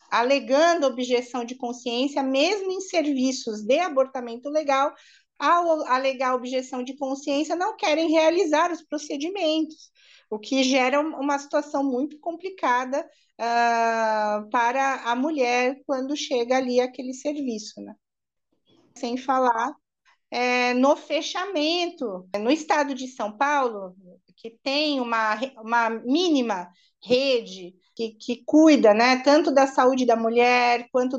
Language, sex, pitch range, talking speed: Portuguese, female, 240-300 Hz, 115 wpm